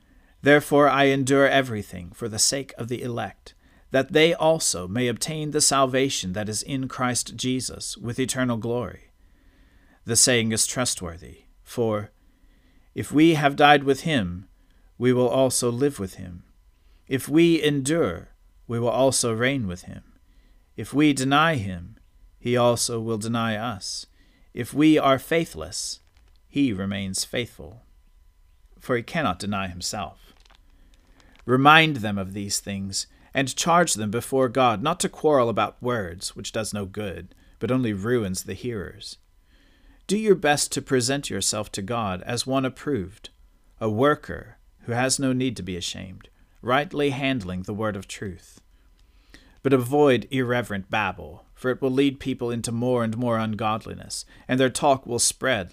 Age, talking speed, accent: 40-59, 150 wpm, American